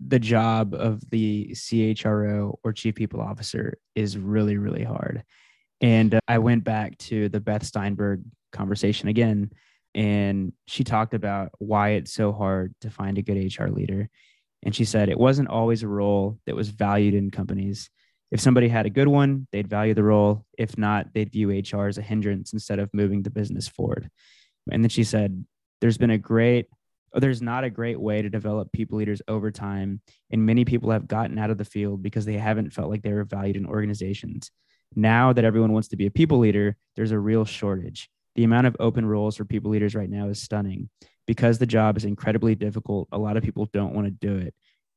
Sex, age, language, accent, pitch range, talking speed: male, 20-39, English, American, 105-115 Hz, 205 wpm